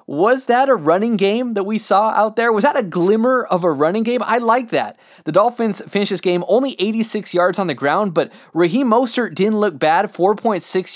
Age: 20-39